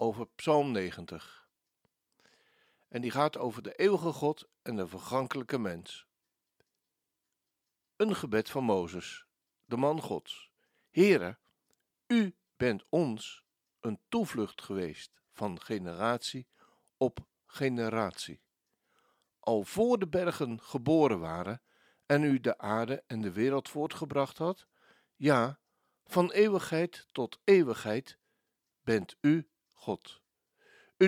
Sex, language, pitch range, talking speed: male, Dutch, 120-185 Hz, 110 wpm